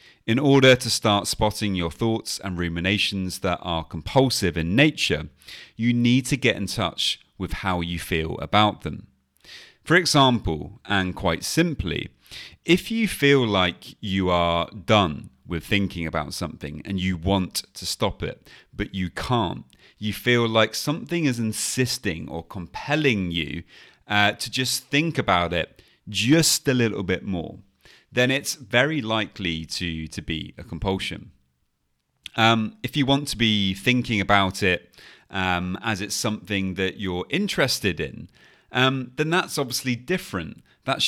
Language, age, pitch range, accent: English, 30-49, 95-125 Hz, British